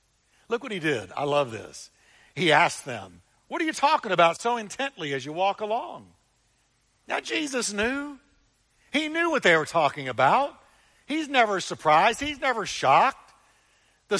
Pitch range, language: 160-215 Hz, English